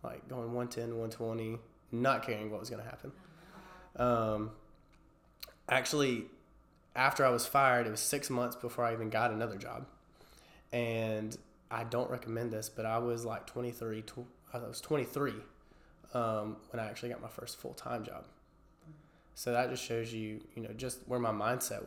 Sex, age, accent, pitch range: male, 20-39, American, 110-125 Hz